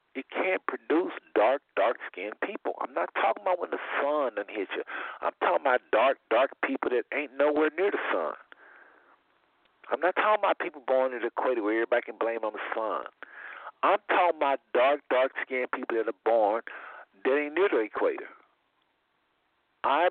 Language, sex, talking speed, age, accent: English, male, 180 wpm, 60-79, American